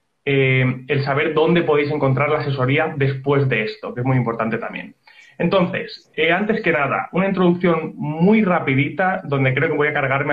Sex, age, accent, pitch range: male, 30-49, Spanish, 140-185 Hz